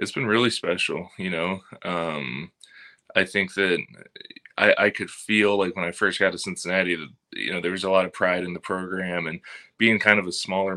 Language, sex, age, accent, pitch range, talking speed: English, male, 20-39, American, 85-95 Hz, 210 wpm